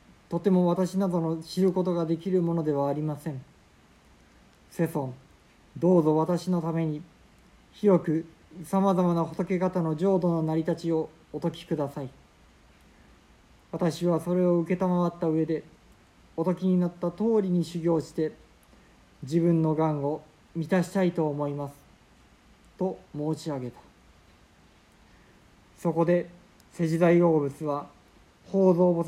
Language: Japanese